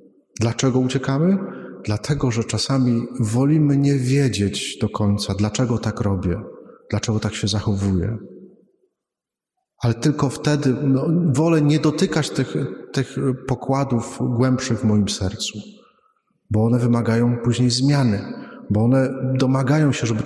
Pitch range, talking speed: 110-140 Hz, 120 wpm